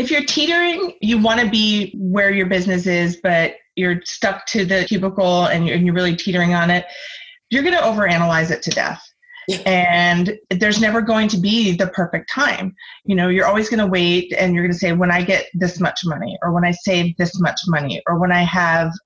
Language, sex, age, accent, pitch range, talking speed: English, female, 30-49, American, 175-220 Hz, 215 wpm